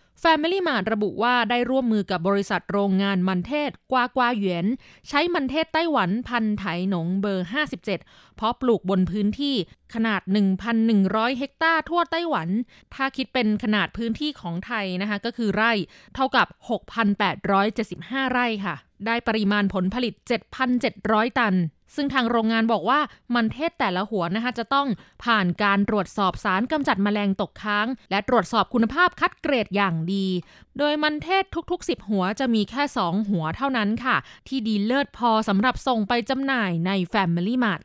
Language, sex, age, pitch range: Thai, female, 20-39, 200-265 Hz